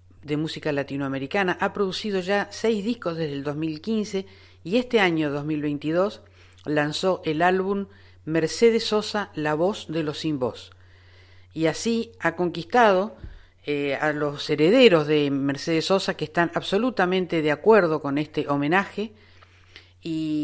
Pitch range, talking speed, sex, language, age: 145-185 Hz, 135 wpm, female, Spanish, 50-69